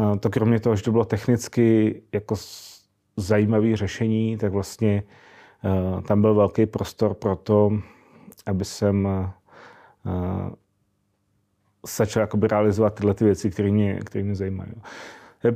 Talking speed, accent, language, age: 115 wpm, native, Czech, 30-49